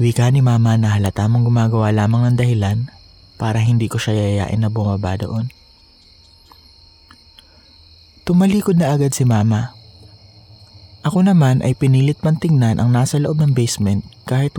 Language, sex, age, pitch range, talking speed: Filipino, male, 20-39, 105-130 Hz, 140 wpm